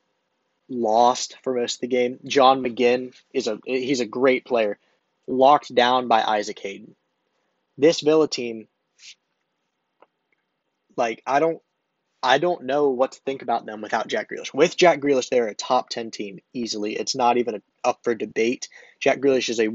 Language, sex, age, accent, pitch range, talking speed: English, male, 20-39, American, 120-145 Hz, 170 wpm